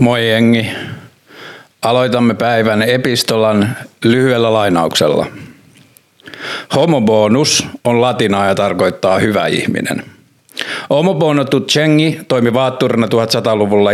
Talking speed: 85 wpm